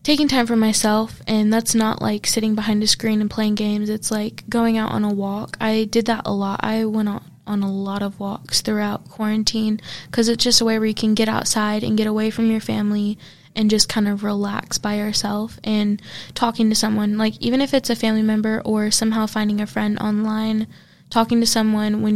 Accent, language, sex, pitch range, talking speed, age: American, English, female, 210-225 Hz, 215 wpm, 10-29